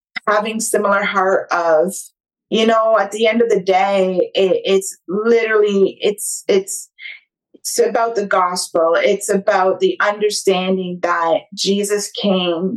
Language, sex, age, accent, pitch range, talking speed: English, female, 30-49, American, 190-225 Hz, 125 wpm